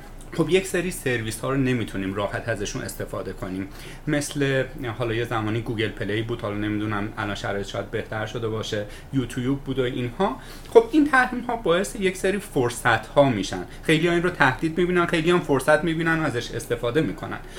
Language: Persian